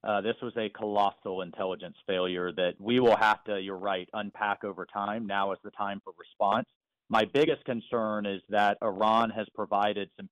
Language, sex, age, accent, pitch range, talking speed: English, male, 40-59, American, 100-120 Hz, 185 wpm